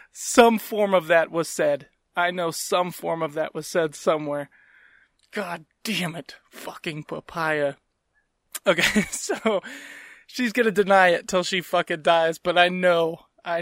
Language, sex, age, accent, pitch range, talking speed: English, male, 20-39, American, 160-185 Hz, 150 wpm